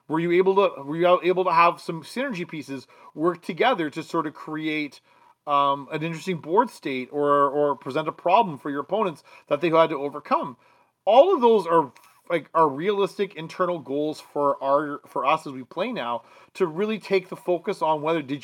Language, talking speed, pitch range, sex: English, 200 wpm, 145-185 Hz, male